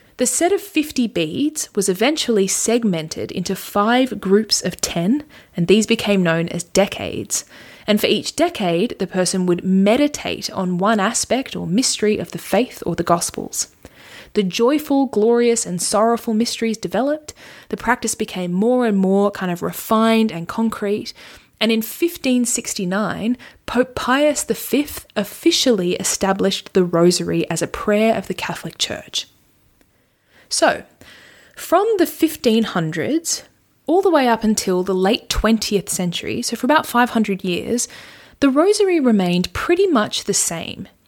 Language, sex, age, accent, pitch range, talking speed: English, female, 20-39, Australian, 190-250 Hz, 145 wpm